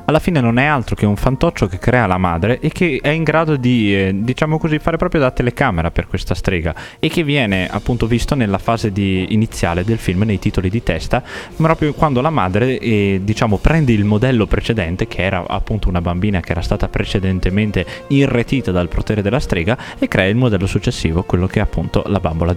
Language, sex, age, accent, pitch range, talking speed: Italian, male, 20-39, native, 95-125 Hz, 205 wpm